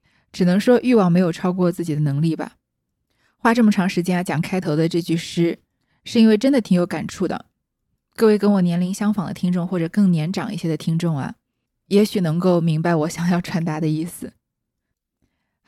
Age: 20-39